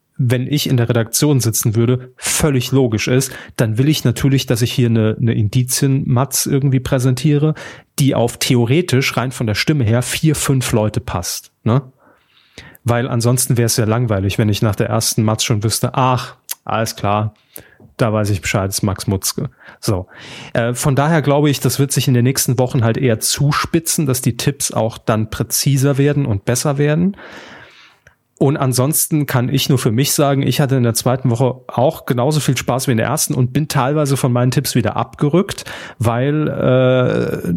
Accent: German